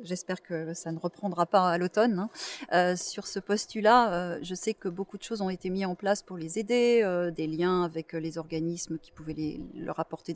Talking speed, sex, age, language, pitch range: 225 wpm, female, 30-49, French, 175-210 Hz